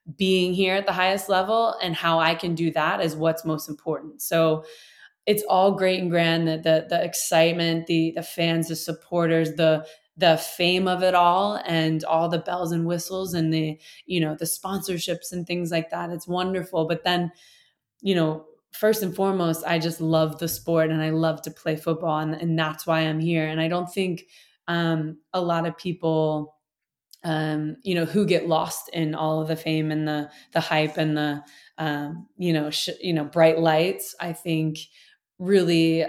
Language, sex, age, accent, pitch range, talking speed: English, female, 20-39, American, 160-180 Hz, 195 wpm